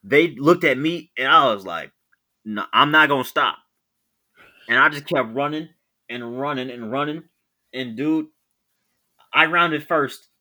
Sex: male